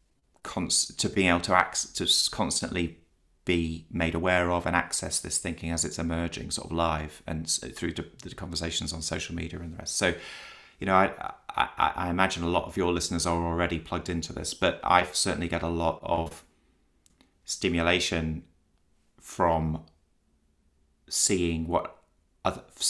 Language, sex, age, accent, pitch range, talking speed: English, male, 30-49, British, 80-90 Hz, 160 wpm